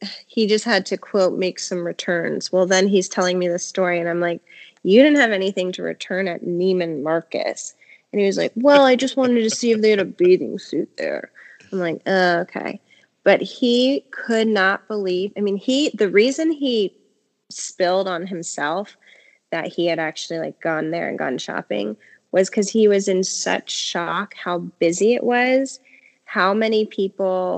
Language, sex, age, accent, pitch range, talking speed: English, female, 20-39, American, 185-215 Hz, 185 wpm